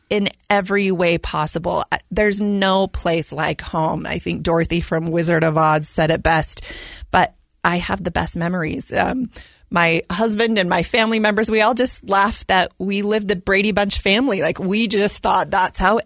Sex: female